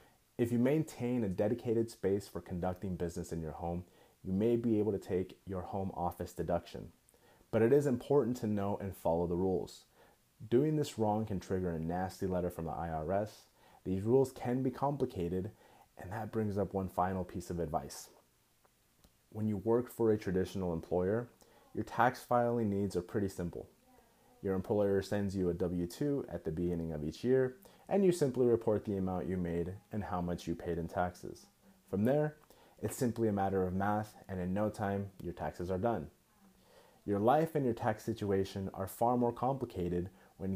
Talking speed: 185 wpm